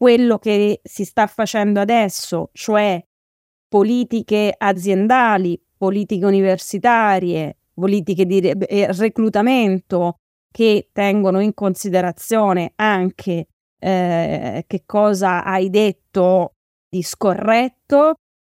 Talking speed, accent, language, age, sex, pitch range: 85 wpm, native, Italian, 20-39, female, 180-215 Hz